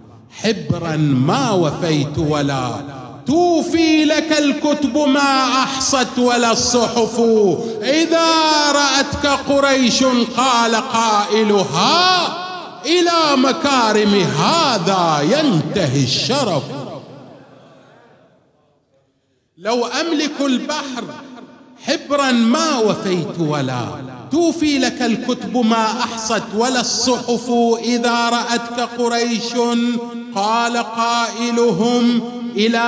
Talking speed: 75 wpm